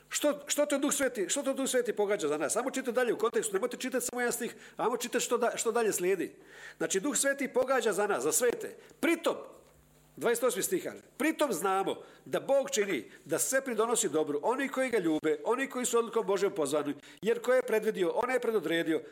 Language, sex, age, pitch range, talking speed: Croatian, male, 50-69, 210-280 Hz, 205 wpm